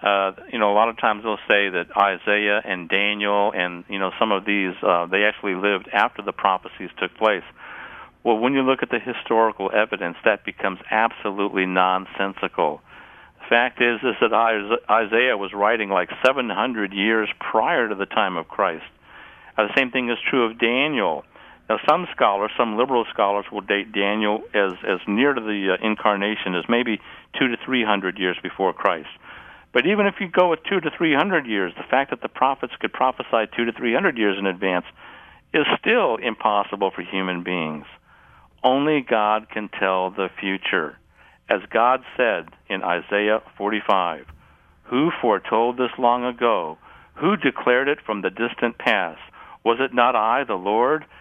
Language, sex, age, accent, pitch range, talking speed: English, male, 60-79, American, 95-120 Hz, 175 wpm